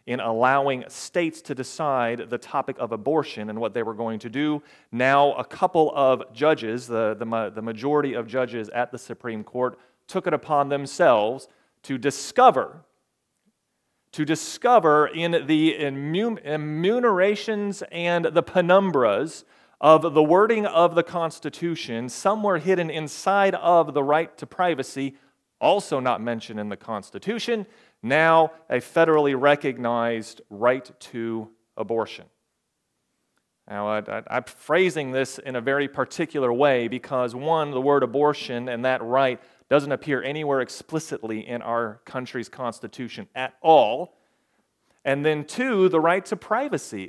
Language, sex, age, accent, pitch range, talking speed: English, male, 40-59, American, 125-165 Hz, 135 wpm